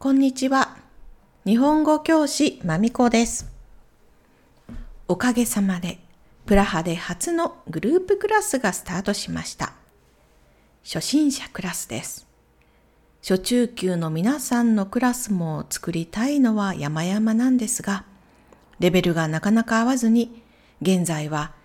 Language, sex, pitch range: Japanese, female, 175-255 Hz